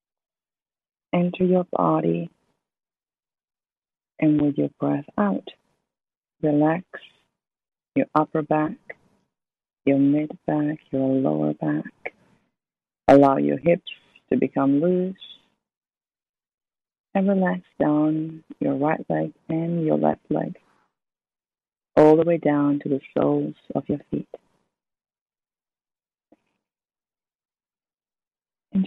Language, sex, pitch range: English, female, 145-180 Hz